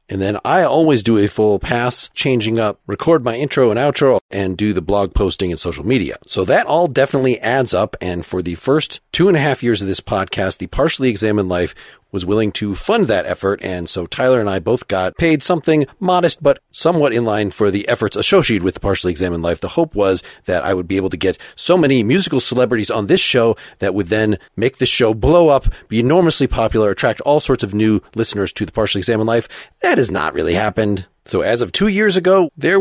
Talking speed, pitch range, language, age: 230 wpm, 100-135 Hz, English, 40-59